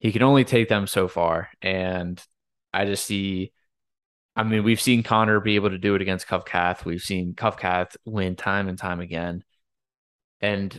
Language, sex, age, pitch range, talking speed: English, male, 20-39, 95-115 Hz, 180 wpm